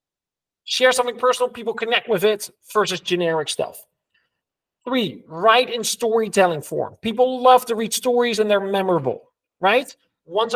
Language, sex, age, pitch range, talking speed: English, male, 40-59, 175-230 Hz, 140 wpm